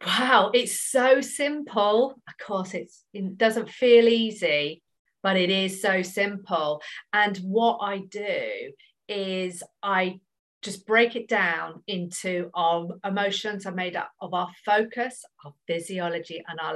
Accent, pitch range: British, 185-235 Hz